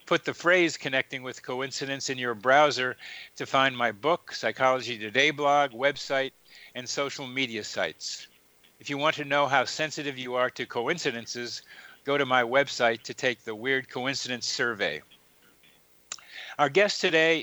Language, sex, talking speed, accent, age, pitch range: English, male, 155 wpm, American, 50-69, 120-140 Hz